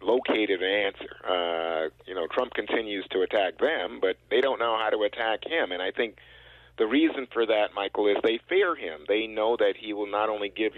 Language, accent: English, American